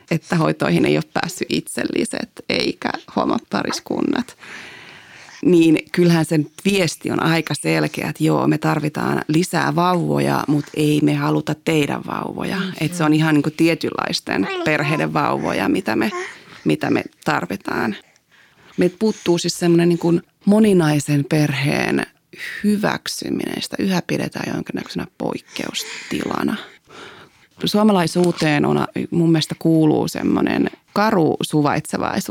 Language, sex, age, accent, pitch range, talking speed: Finnish, female, 30-49, native, 155-200 Hz, 110 wpm